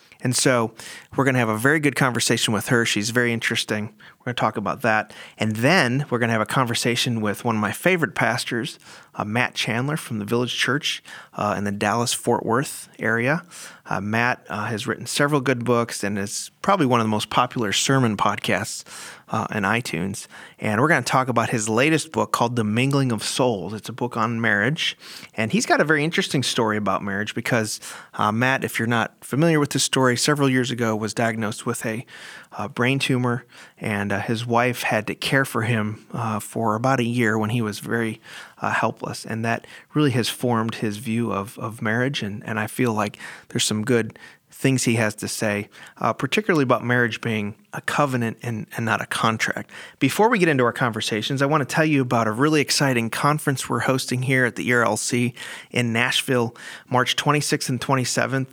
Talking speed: 205 wpm